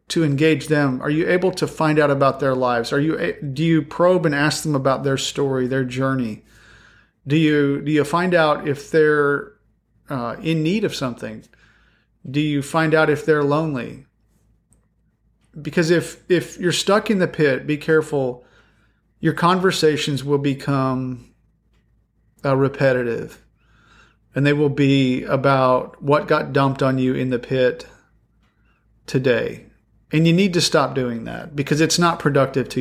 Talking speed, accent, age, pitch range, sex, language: 160 wpm, American, 40-59, 125-155 Hz, male, English